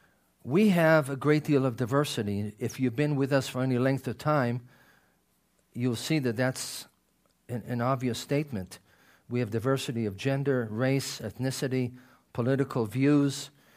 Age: 50-69